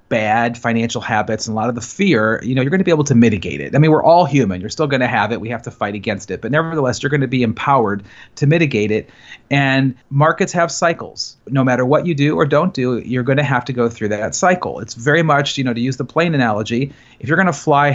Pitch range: 120-150 Hz